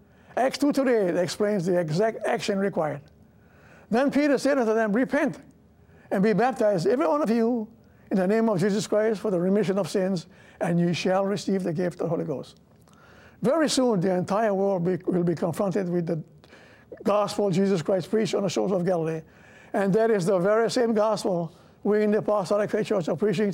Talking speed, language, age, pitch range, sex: 190 wpm, English, 60-79, 190-235 Hz, male